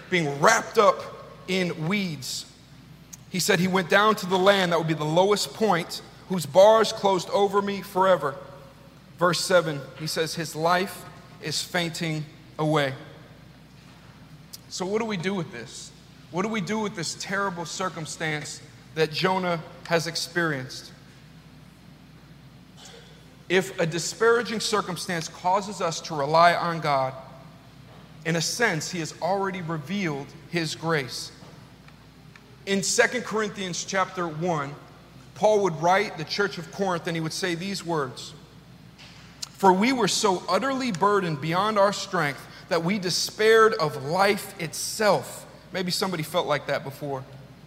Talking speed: 140 wpm